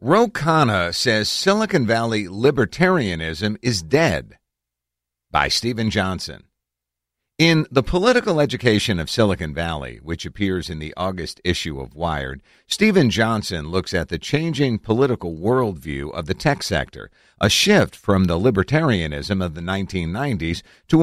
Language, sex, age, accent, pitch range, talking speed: English, male, 50-69, American, 85-125 Hz, 135 wpm